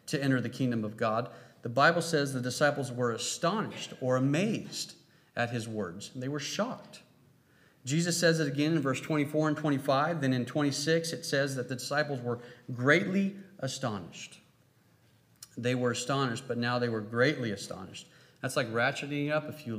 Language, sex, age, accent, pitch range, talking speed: English, male, 40-59, American, 125-155 Hz, 170 wpm